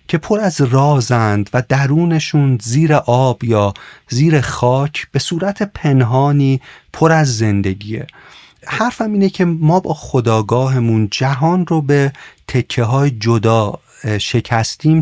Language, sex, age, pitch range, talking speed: Persian, male, 40-59, 115-155 Hz, 120 wpm